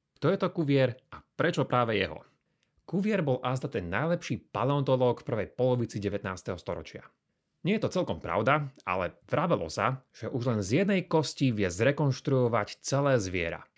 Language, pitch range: Slovak, 110-150 Hz